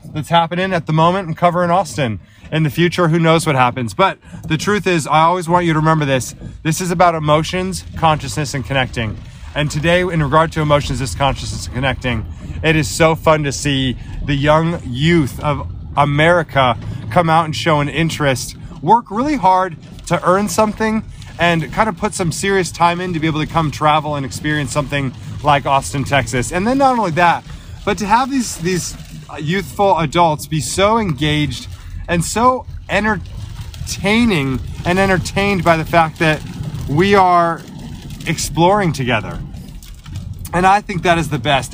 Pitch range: 135-175 Hz